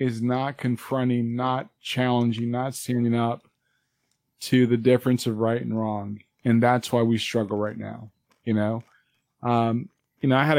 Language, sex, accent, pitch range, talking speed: English, male, American, 115-135 Hz, 165 wpm